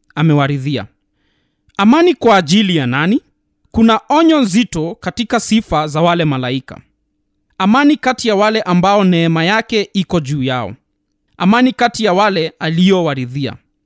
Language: Swahili